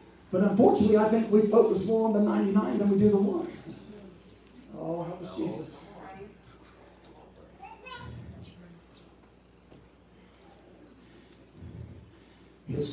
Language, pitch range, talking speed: English, 205-265 Hz, 95 wpm